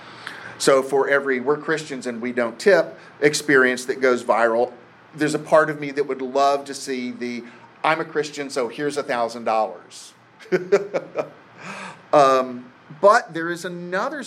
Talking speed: 145 wpm